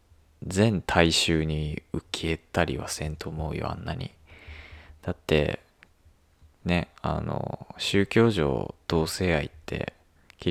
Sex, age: male, 20-39